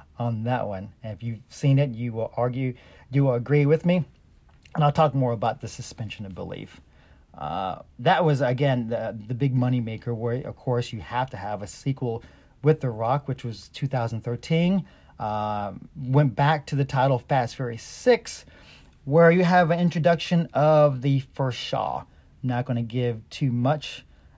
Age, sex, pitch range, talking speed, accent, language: 40-59, male, 115-150 Hz, 180 wpm, American, English